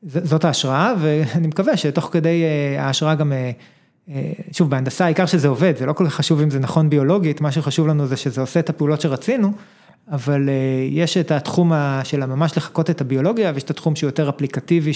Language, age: Hebrew, 20-39